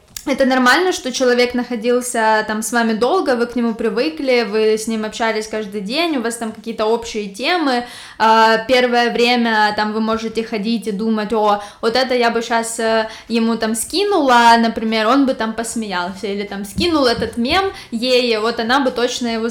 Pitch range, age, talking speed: 225-265 Hz, 10-29, 180 wpm